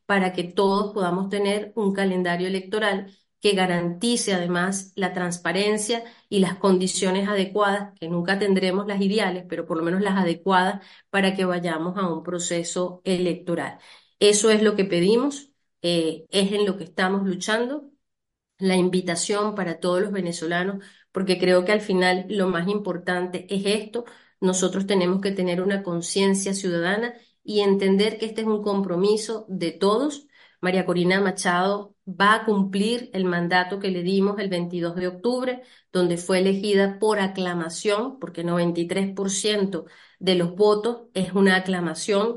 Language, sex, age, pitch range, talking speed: English, female, 30-49, 180-210 Hz, 150 wpm